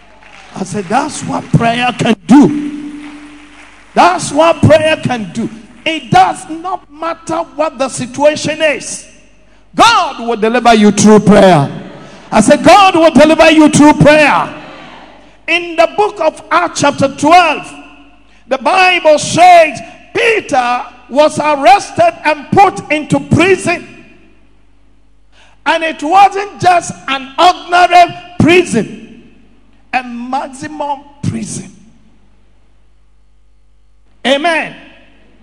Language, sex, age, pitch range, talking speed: English, male, 50-69, 225-320 Hz, 105 wpm